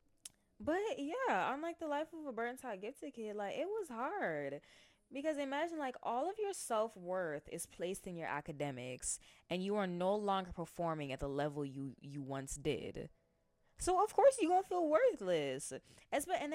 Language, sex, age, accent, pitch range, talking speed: English, female, 10-29, American, 150-215 Hz, 180 wpm